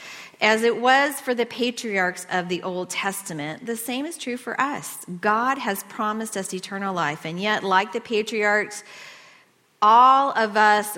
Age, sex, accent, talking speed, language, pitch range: 40-59, female, American, 165 wpm, English, 195-260 Hz